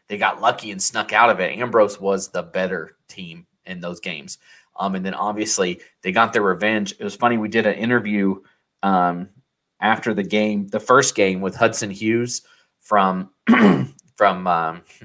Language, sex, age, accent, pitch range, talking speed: English, male, 30-49, American, 100-110 Hz, 175 wpm